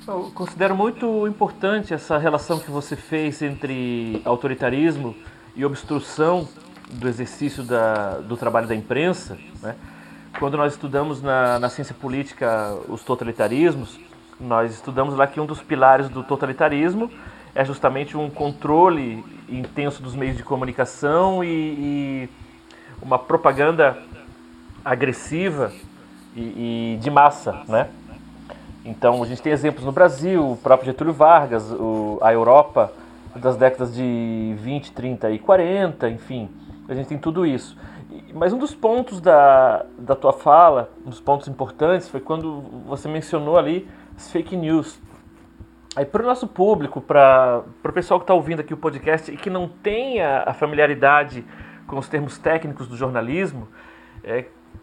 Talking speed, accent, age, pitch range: 145 wpm, Brazilian, 30-49, 120-160 Hz